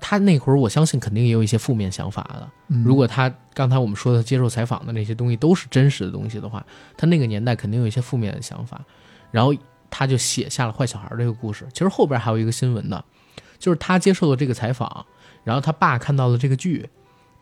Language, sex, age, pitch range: Chinese, male, 20-39, 115-145 Hz